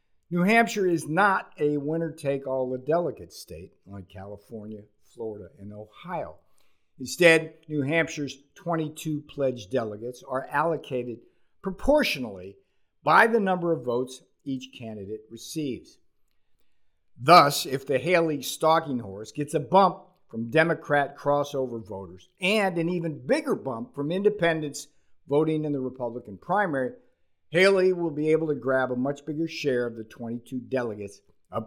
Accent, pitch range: American, 115-165 Hz